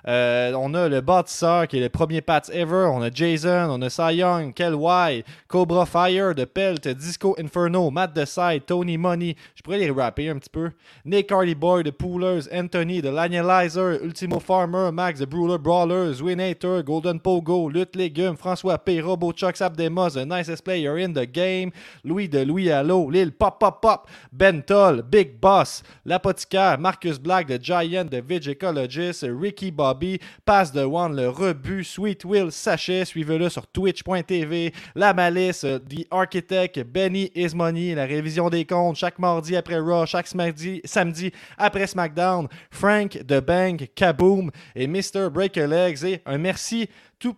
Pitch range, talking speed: 160-185 Hz, 165 wpm